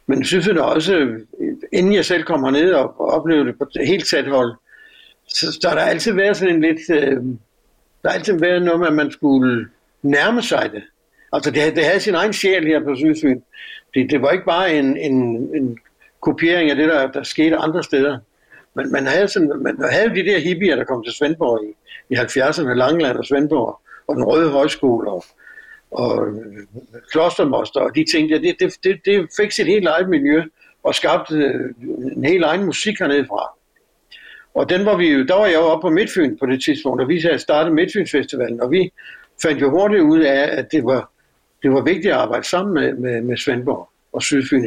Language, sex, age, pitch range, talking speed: Danish, male, 60-79, 130-180 Hz, 205 wpm